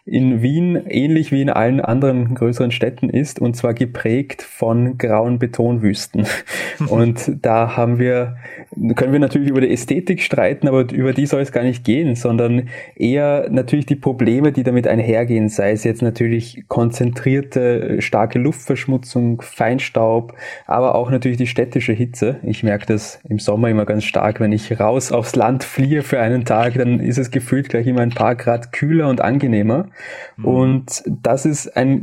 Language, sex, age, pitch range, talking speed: German, male, 20-39, 115-135 Hz, 170 wpm